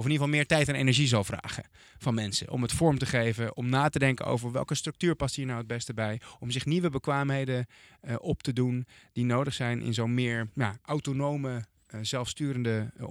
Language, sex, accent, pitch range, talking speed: Dutch, male, Dutch, 115-145 Hz, 225 wpm